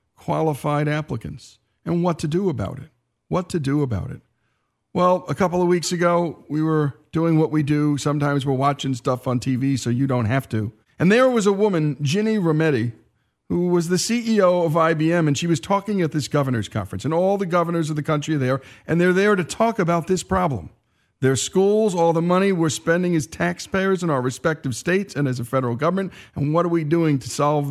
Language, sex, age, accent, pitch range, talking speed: English, male, 50-69, American, 130-170 Hz, 215 wpm